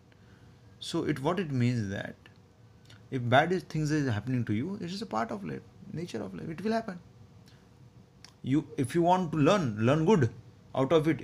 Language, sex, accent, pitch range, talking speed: Hindi, male, native, 115-160 Hz, 200 wpm